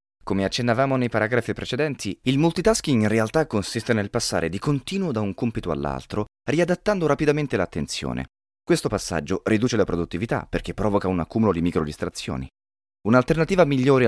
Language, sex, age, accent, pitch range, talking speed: Italian, male, 30-49, native, 85-145 Hz, 145 wpm